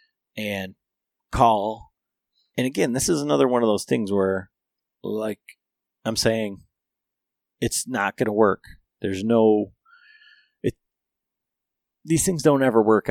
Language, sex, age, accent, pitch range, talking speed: English, male, 30-49, American, 105-130 Hz, 130 wpm